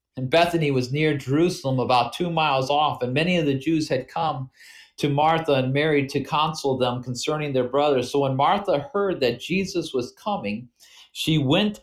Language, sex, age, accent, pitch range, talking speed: English, male, 40-59, American, 135-185 Hz, 185 wpm